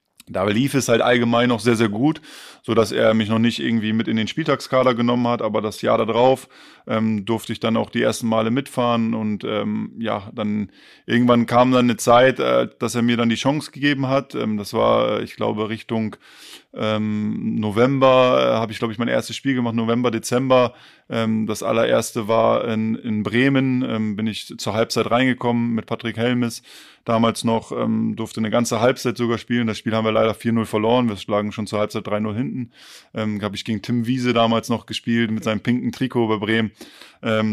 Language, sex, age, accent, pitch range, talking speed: German, male, 20-39, German, 110-125 Hz, 200 wpm